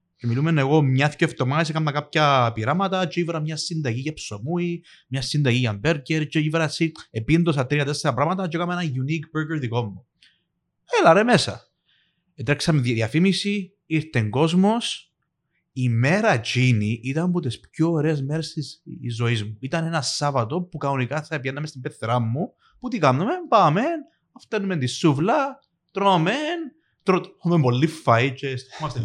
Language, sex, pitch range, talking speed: Greek, male, 125-175 Hz, 150 wpm